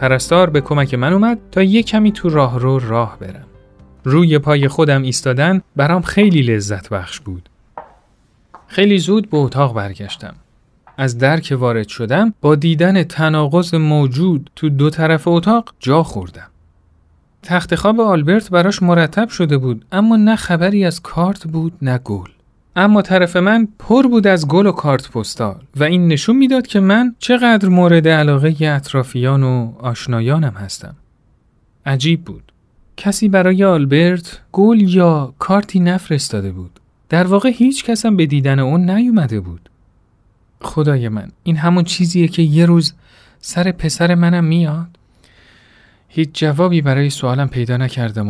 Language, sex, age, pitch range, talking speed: Persian, male, 40-59, 125-180 Hz, 145 wpm